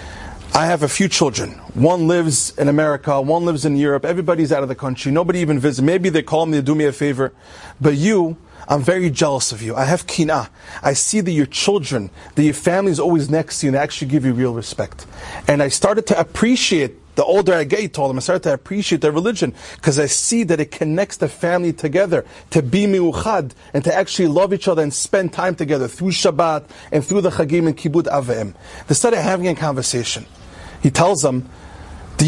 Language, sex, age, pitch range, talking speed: English, male, 30-49, 135-175 Hz, 215 wpm